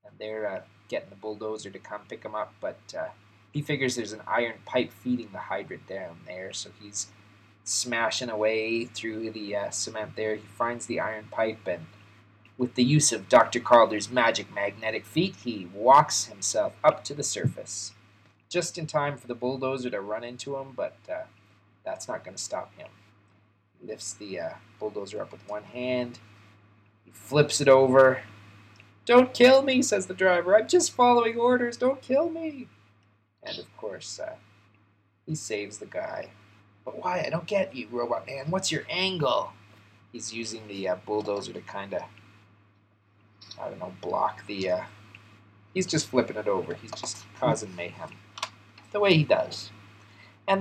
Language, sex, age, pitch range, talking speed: English, male, 20-39, 105-135 Hz, 175 wpm